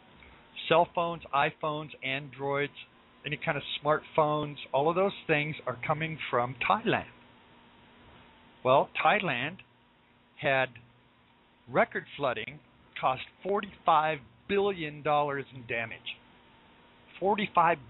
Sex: male